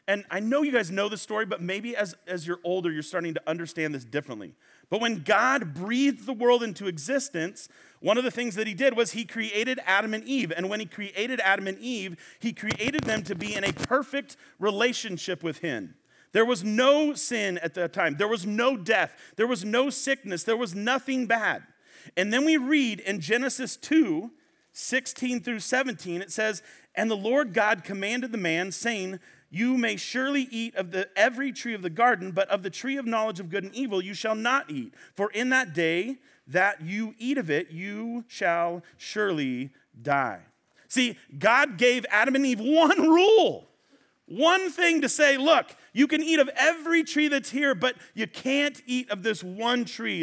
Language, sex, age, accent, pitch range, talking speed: English, male, 40-59, American, 185-260 Hz, 195 wpm